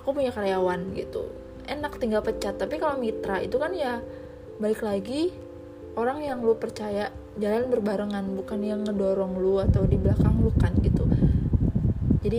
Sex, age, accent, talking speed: female, 20-39, native, 155 wpm